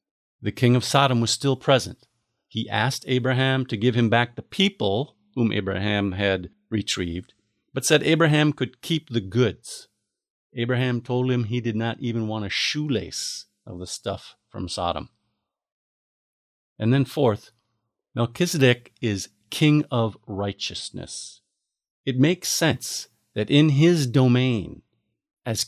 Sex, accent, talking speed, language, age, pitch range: male, American, 135 wpm, English, 50-69, 105-130 Hz